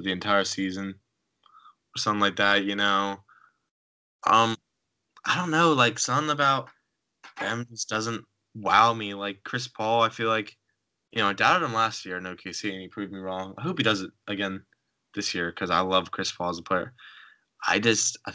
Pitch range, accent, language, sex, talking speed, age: 95-115 Hz, American, English, male, 195 wpm, 10-29